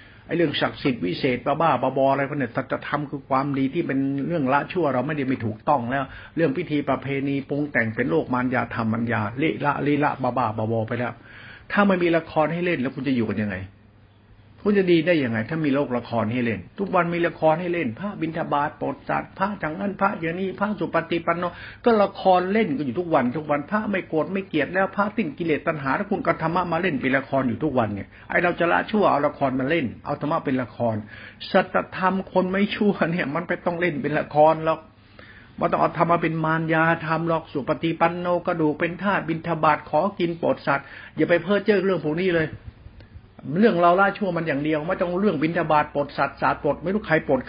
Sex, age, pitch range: male, 60-79, 130-175 Hz